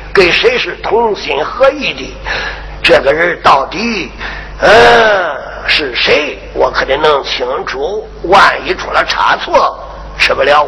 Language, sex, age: Chinese, male, 50-69